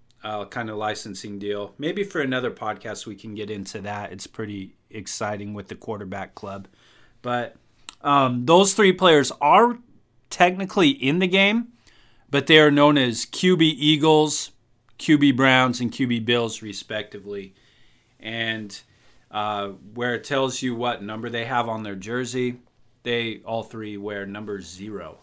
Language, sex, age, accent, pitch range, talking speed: English, male, 30-49, American, 105-150 Hz, 150 wpm